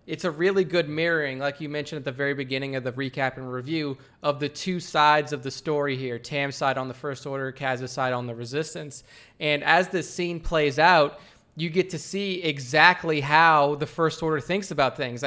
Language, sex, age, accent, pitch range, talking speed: English, male, 20-39, American, 135-160 Hz, 210 wpm